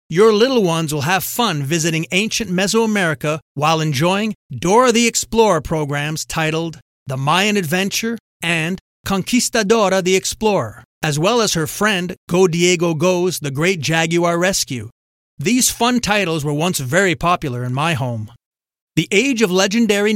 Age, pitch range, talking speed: 30-49, 145-200 Hz, 145 wpm